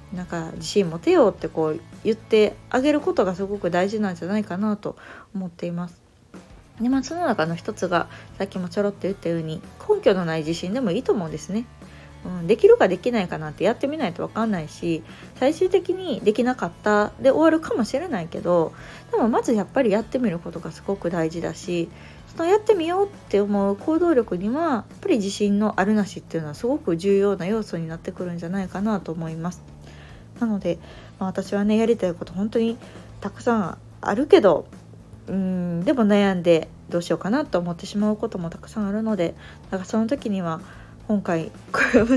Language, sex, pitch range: Japanese, female, 175-225 Hz